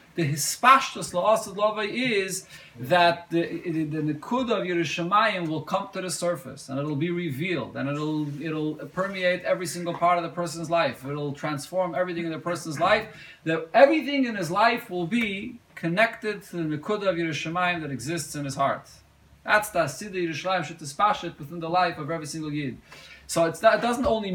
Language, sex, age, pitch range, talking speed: English, male, 30-49, 135-185 Hz, 195 wpm